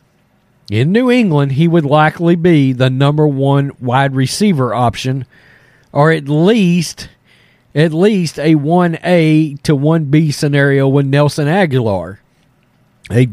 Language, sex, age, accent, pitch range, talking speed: English, male, 40-59, American, 125-185 Hz, 120 wpm